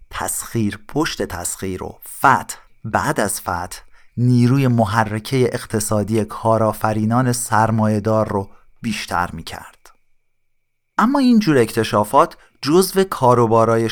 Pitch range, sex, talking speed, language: 105-130 Hz, male, 95 wpm, Persian